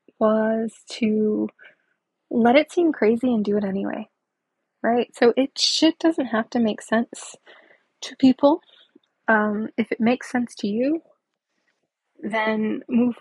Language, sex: English, female